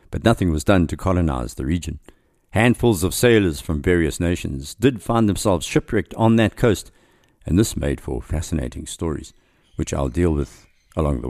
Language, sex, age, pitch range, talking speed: English, male, 50-69, 85-115 Hz, 175 wpm